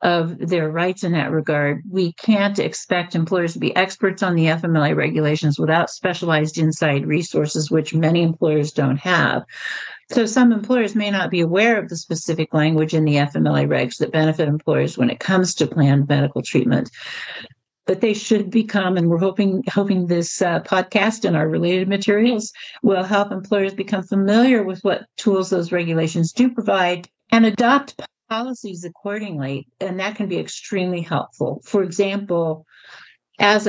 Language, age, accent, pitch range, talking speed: English, 50-69, American, 155-195 Hz, 160 wpm